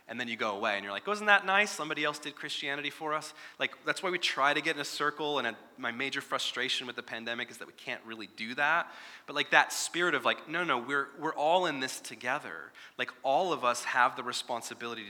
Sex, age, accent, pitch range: male, 30-49, American, 115-175 Hz